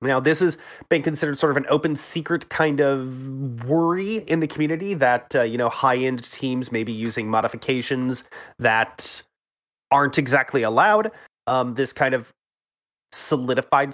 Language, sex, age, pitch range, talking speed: English, male, 30-49, 125-155 Hz, 155 wpm